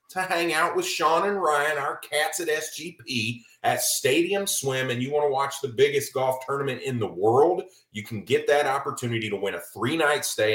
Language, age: English, 30-49